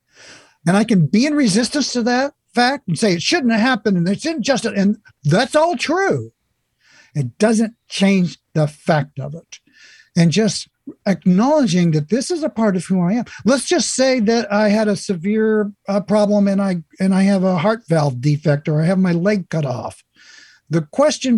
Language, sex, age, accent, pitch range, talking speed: English, male, 60-79, American, 160-240 Hz, 195 wpm